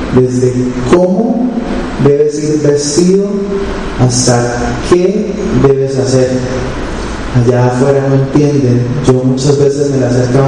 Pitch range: 120-135 Hz